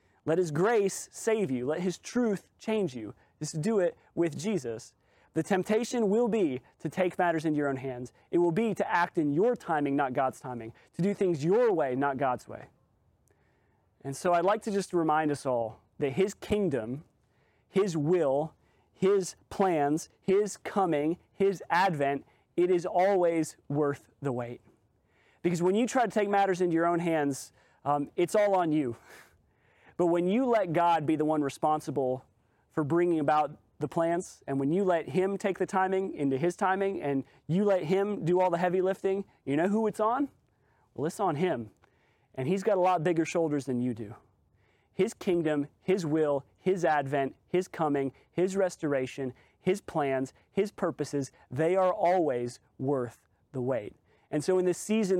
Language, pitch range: English, 140-190 Hz